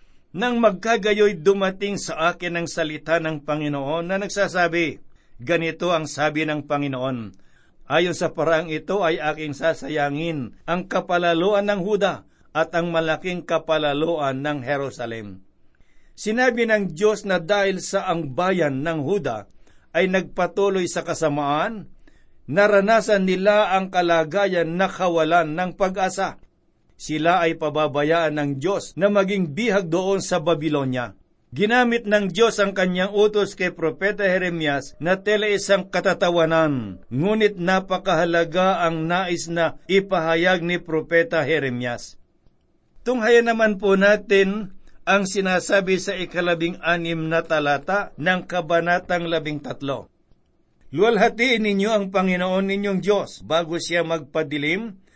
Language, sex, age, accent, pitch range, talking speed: Filipino, male, 60-79, native, 160-195 Hz, 120 wpm